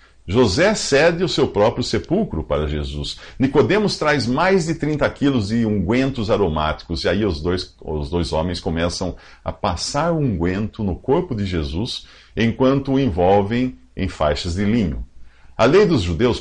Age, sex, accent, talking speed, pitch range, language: 50-69, male, Brazilian, 155 wpm, 80-130 Hz, English